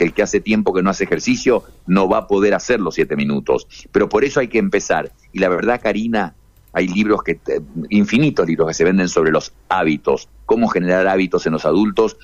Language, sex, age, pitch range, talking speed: Spanish, male, 50-69, 90-120 Hz, 210 wpm